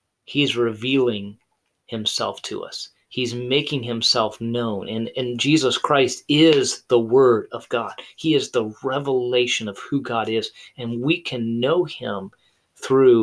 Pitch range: 110-155 Hz